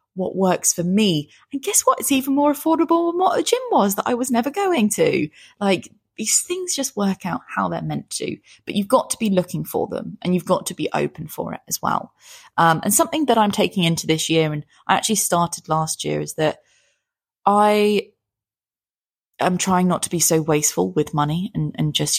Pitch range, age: 155-210 Hz, 20-39